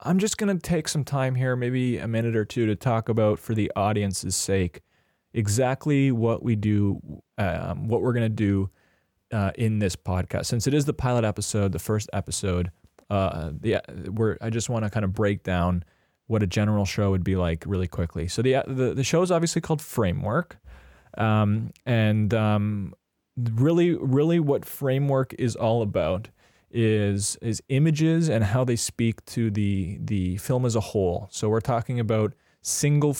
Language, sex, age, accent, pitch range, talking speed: English, male, 20-39, American, 100-125 Hz, 185 wpm